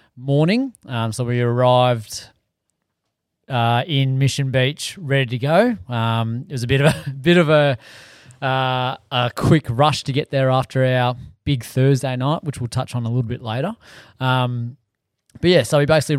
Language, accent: English, Australian